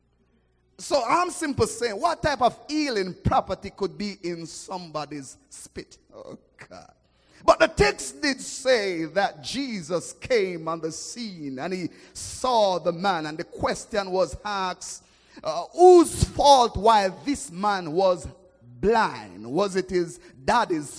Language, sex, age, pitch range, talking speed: English, male, 30-49, 180-270 Hz, 140 wpm